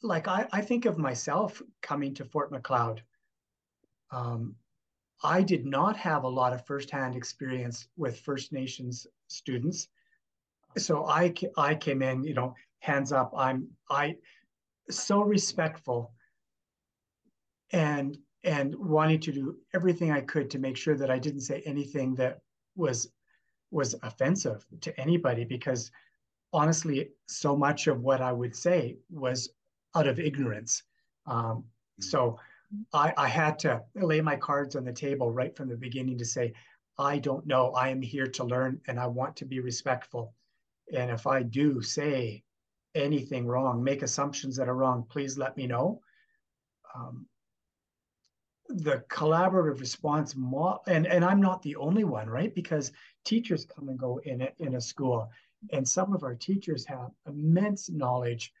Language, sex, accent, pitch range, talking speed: English, male, American, 125-155 Hz, 155 wpm